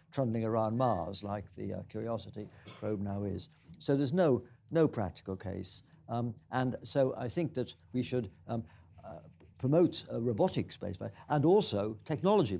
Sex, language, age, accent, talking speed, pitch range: male, English, 60-79, British, 150 wpm, 110-140 Hz